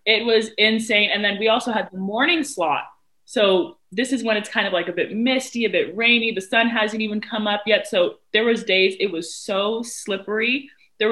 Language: English